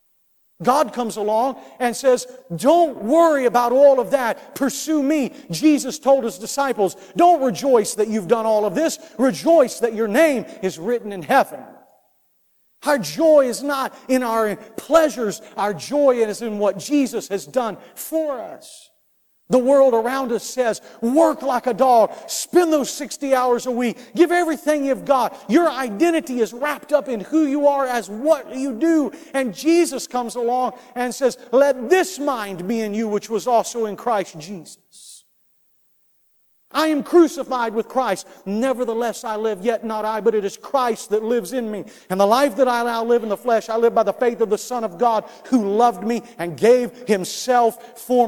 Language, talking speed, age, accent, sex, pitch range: English, 180 wpm, 50-69, American, male, 215-275 Hz